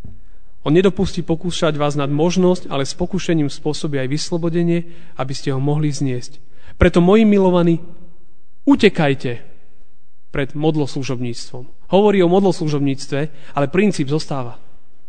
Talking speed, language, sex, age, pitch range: 115 wpm, Slovak, male, 40-59, 140-175 Hz